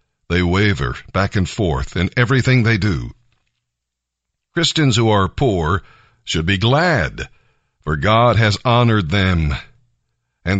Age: 60-79